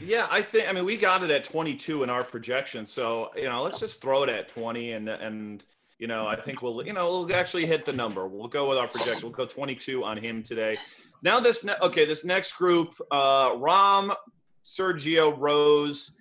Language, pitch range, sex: English, 120-165 Hz, male